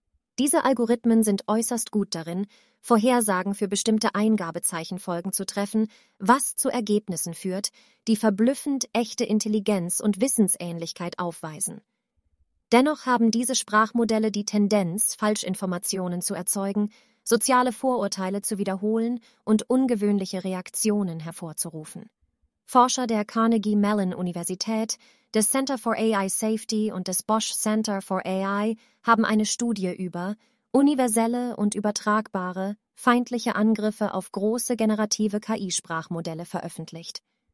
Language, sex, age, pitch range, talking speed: German, female, 30-49, 195-235 Hz, 110 wpm